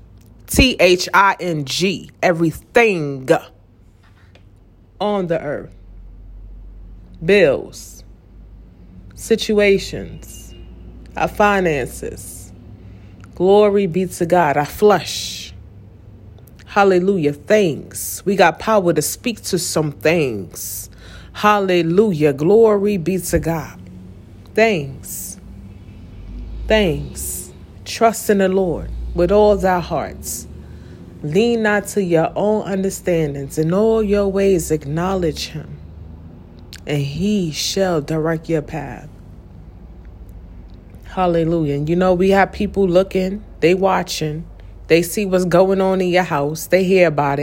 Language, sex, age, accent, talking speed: English, female, 30-49, American, 105 wpm